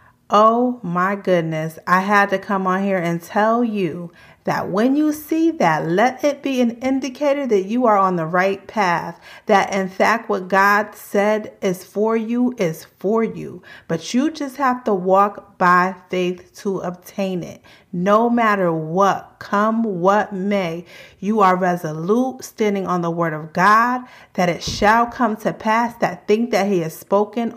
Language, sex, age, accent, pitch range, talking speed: English, female, 30-49, American, 180-225 Hz, 170 wpm